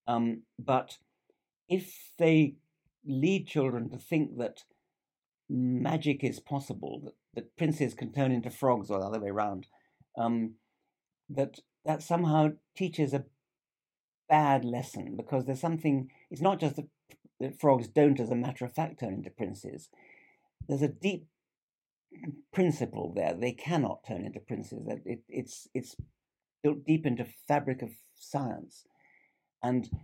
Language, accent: English, British